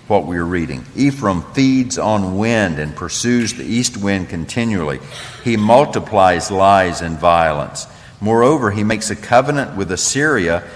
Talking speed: 140 wpm